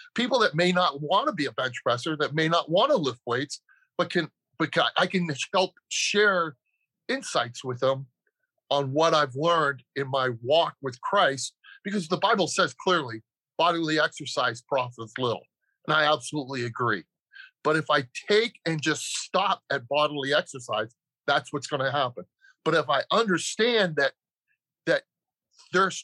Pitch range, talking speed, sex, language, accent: 150-215 Hz, 165 wpm, male, English, American